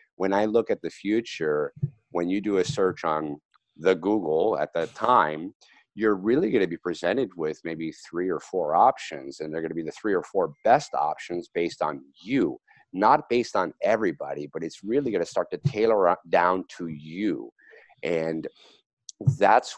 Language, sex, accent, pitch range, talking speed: English, male, American, 80-125 Hz, 180 wpm